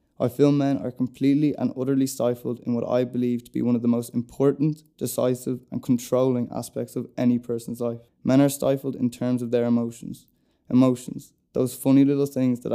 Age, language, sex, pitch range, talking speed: 10-29, English, male, 120-130 Hz, 195 wpm